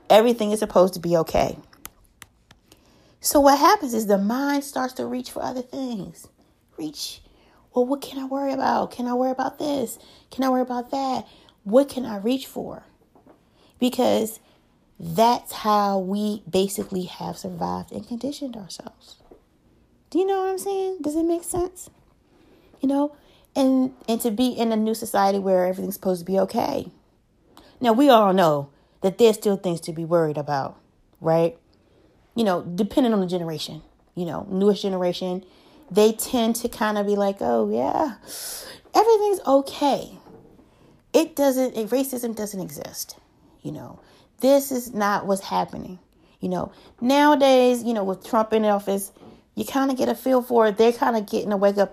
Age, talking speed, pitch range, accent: 30-49, 170 wpm, 195-265 Hz, American